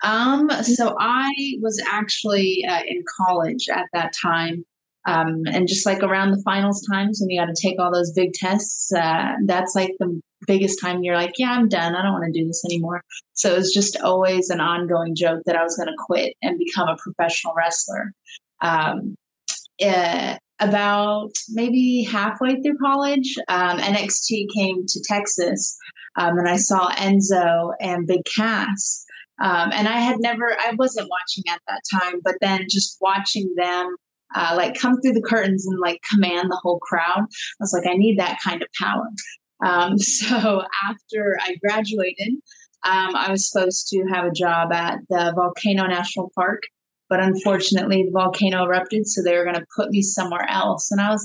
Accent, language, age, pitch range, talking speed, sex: American, English, 20-39, 180-215 Hz, 185 wpm, female